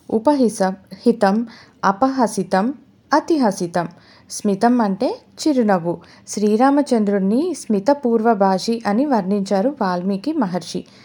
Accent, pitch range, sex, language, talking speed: native, 185-235 Hz, female, Telugu, 75 wpm